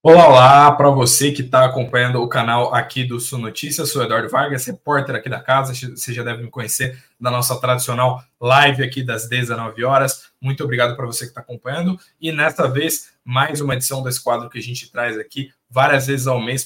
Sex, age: male, 20-39